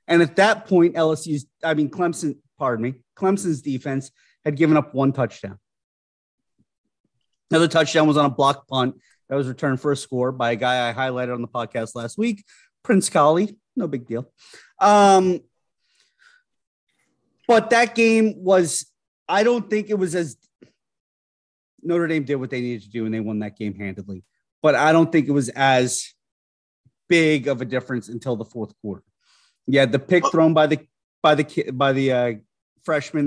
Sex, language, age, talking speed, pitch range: male, English, 30-49, 175 wpm, 120-170 Hz